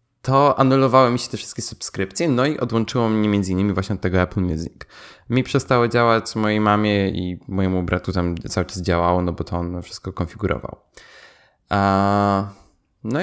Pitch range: 100-125 Hz